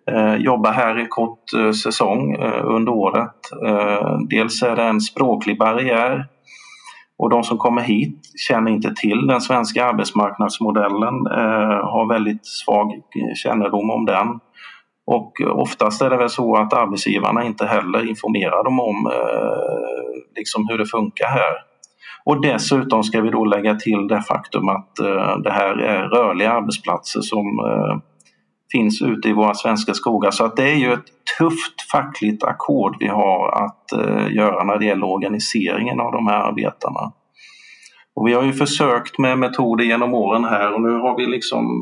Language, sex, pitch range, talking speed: Swedish, male, 105-120 Hz, 150 wpm